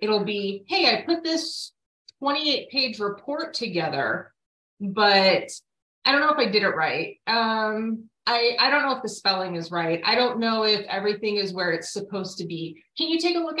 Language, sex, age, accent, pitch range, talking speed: English, female, 30-49, American, 190-255 Hz, 195 wpm